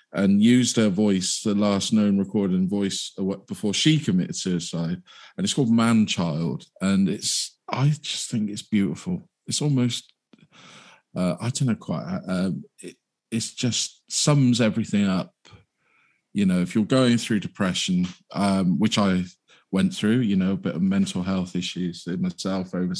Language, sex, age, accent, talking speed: English, male, 40-59, British, 160 wpm